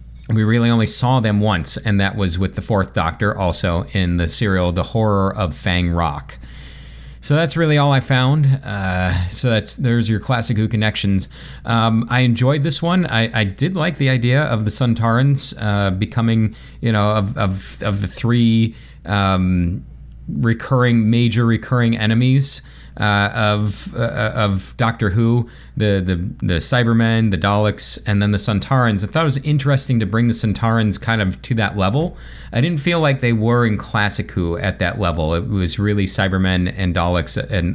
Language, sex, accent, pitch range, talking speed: English, male, American, 90-115 Hz, 180 wpm